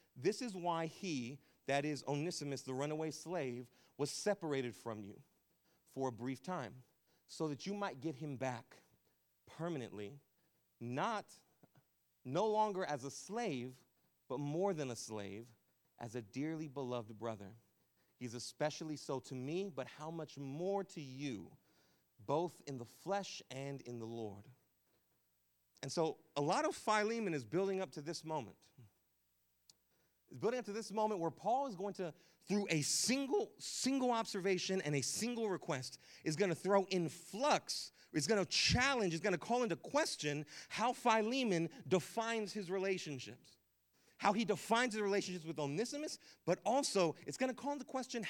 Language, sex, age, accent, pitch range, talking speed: English, male, 40-59, American, 130-200 Hz, 160 wpm